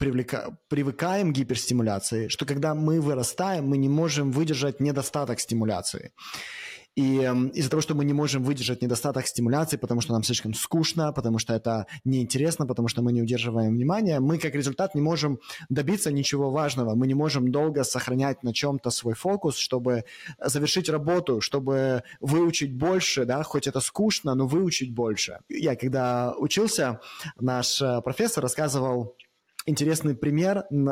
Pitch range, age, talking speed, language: 125-155 Hz, 20-39, 145 wpm, Russian